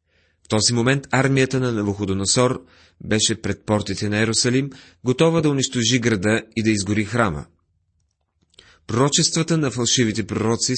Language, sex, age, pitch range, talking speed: Bulgarian, male, 30-49, 100-135 Hz, 130 wpm